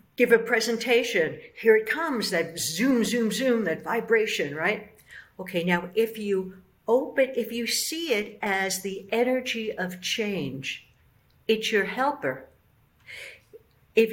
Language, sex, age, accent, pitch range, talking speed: English, female, 60-79, American, 175-235 Hz, 130 wpm